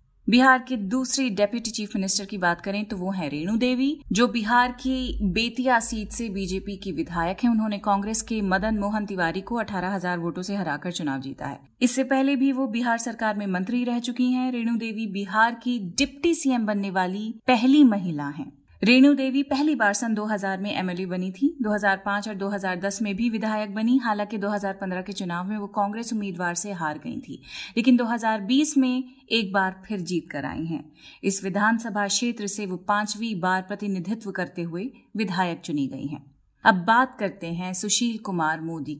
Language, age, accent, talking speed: Hindi, 30-49, native, 185 wpm